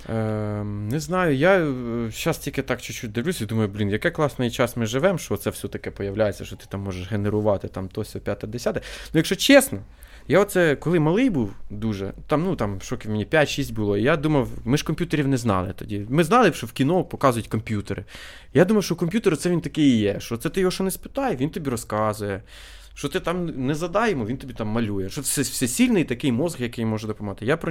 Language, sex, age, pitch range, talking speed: Ukrainian, male, 20-39, 110-155 Hz, 210 wpm